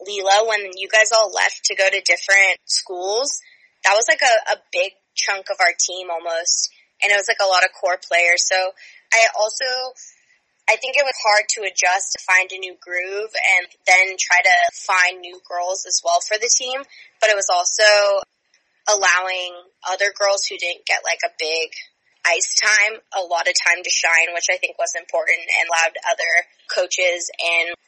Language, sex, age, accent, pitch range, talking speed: English, female, 20-39, American, 180-215 Hz, 190 wpm